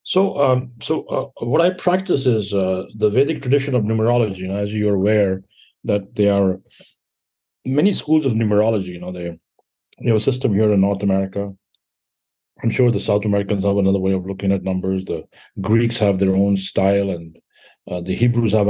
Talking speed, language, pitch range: 195 wpm, English, 95-125 Hz